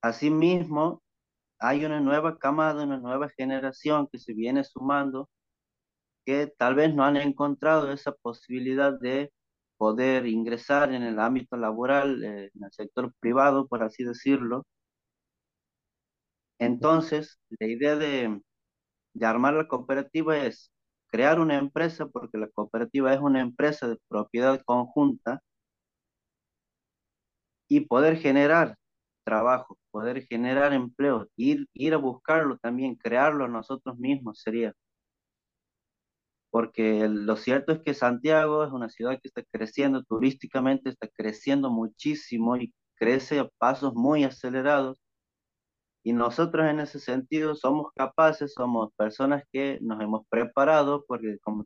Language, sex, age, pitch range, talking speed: Spanish, male, 30-49, 115-145 Hz, 125 wpm